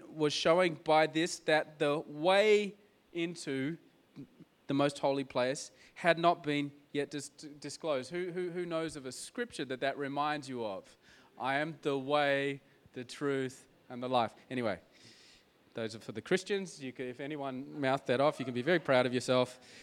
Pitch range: 140-195 Hz